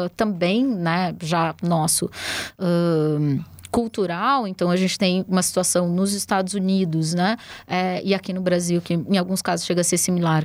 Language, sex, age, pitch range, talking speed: Portuguese, female, 20-39, 170-200 Hz, 160 wpm